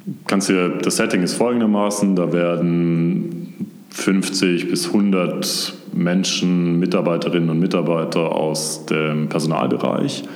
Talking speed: 105 wpm